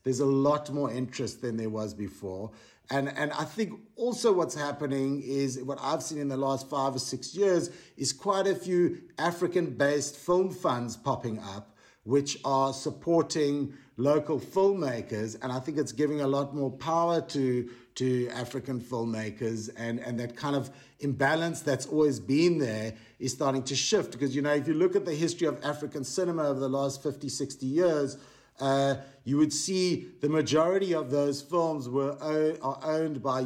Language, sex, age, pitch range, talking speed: English, male, 60-79, 130-160 Hz, 180 wpm